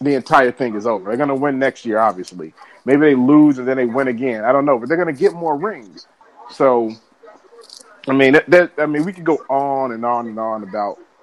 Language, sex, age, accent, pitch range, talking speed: English, male, 30-49, American, 110-140 Hz, 245 wpm